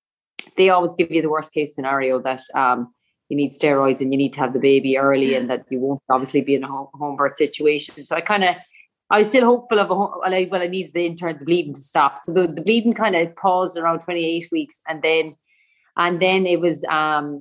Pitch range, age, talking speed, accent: 150-180 Hz, 30-49, 235 wpm, Irish